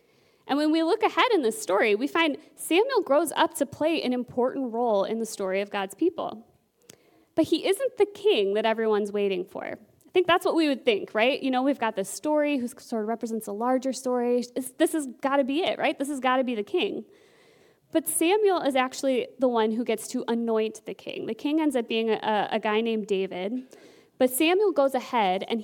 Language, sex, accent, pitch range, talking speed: English, female, American, 225-325 Hz, 220 wpm